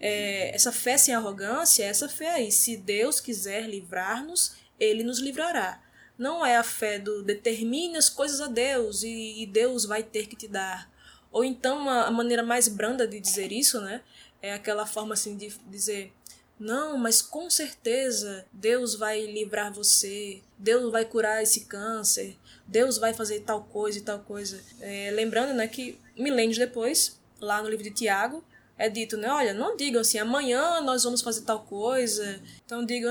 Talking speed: 175 wpm